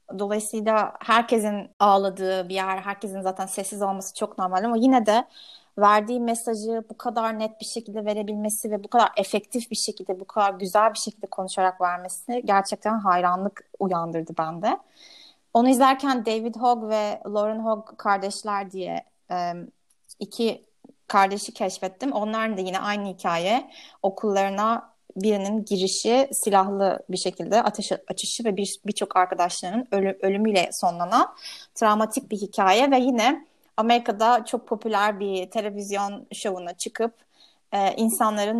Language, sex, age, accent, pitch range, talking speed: Turkish, female, 30-49, native, 195-230 Hz, 130 wpm